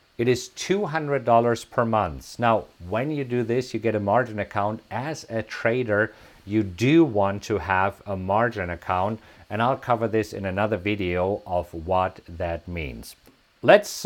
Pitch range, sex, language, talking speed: 110-150 Hz, male, English, 160 wpm